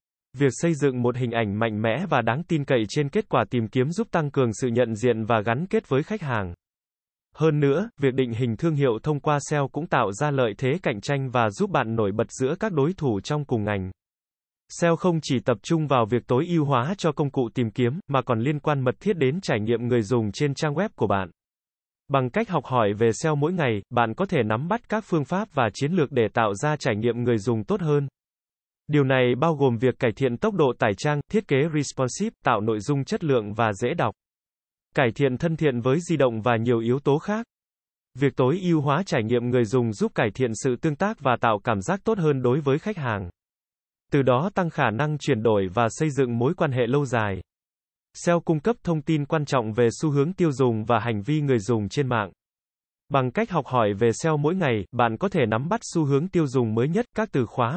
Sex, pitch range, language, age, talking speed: male, 120-160 Hz, Vietnamese, 20-39, 240 wpm